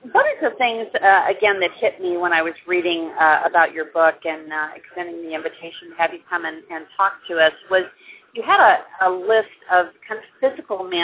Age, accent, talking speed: 40-59, American, 225 wpm